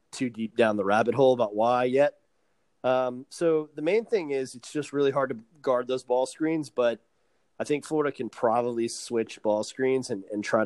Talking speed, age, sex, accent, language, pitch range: 205 wpm, 30-49, male, American, English, 110-135 Hz